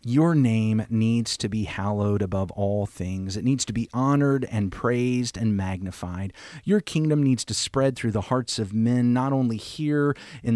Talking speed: 180 wpm